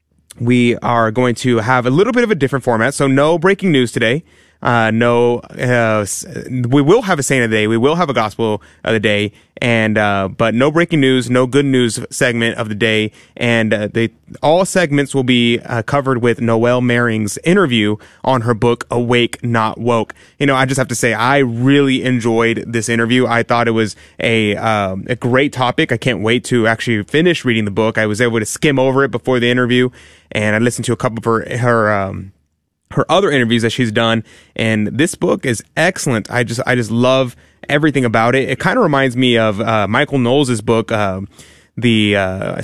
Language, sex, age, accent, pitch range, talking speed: English, male, 20-39, American, 110-130 Hz, 210 wpm